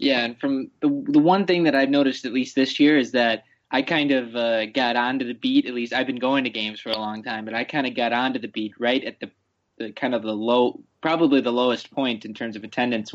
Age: 20-39